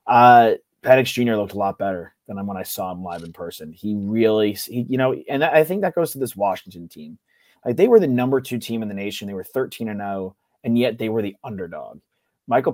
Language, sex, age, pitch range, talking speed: English, male, 30-49, 100-115 Hz, 235 wpm